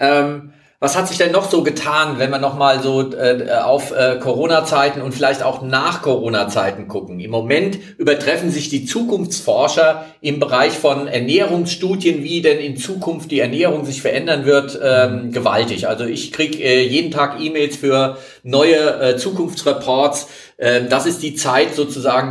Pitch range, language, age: 125-155 Hz, German, 40-59